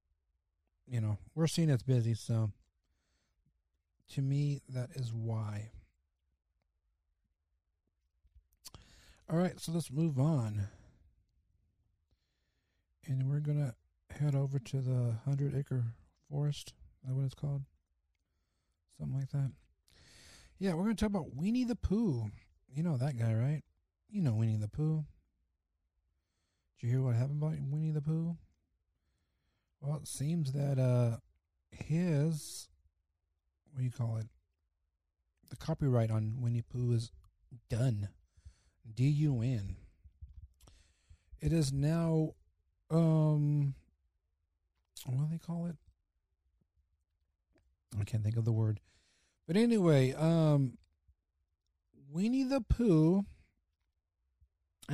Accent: American